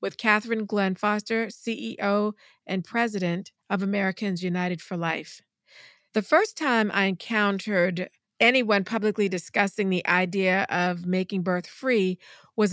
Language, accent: English, American